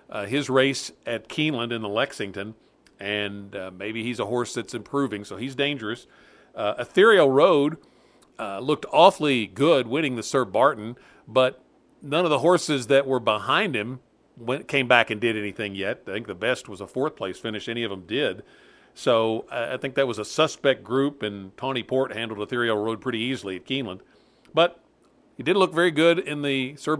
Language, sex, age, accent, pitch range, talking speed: English, male, 50-69, American, 105-130 Hz, 195 wpm